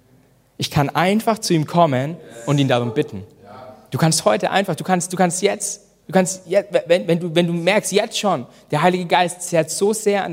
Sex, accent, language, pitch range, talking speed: male, German, German, 160-230 Hz, 215 wpm